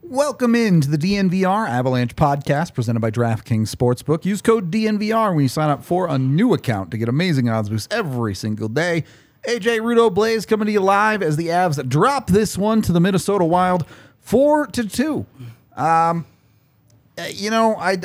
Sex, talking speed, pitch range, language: male, 175 wpm, 135-195 Hz, English